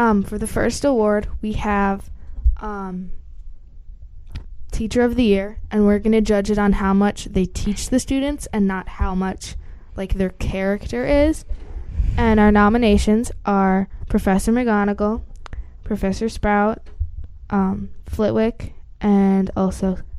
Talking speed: 135 wpm